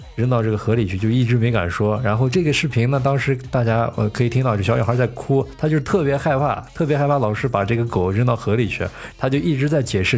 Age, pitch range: 20-39, 100-135 Hz